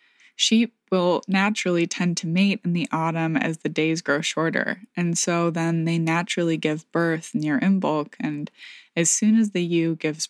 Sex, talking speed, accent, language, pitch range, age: female, 175 wpm, American, English, 155-185 Hz, 20-39